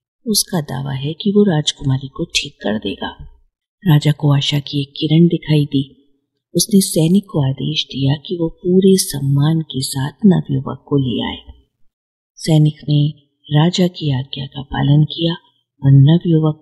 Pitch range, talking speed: 140-180 Hz, 155 wpm